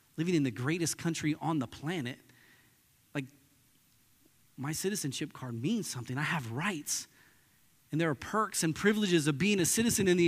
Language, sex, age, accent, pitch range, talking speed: English, male, 30-49, American, 140-220 Hz, 170 wpm